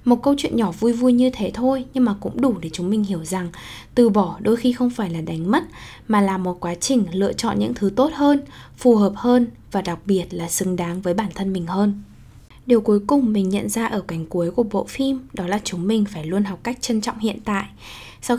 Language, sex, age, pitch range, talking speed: Vietnamese, female, 10-29, 185-240 Hz, 250 wpm